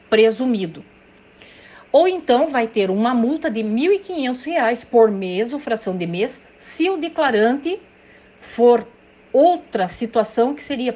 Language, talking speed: Portuguese, 125 wpm